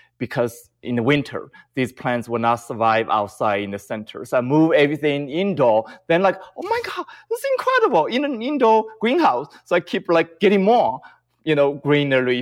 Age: 30-49